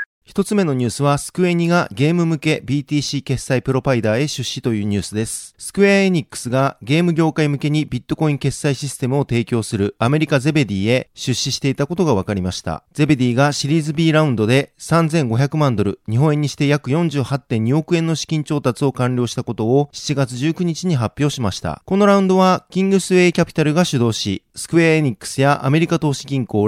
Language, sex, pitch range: Japanese, male, 125-160 Hz